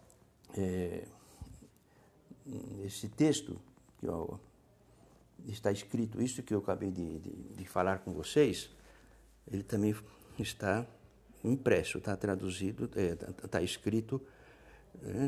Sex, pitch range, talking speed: male, 100-130 Hz, 90 wpm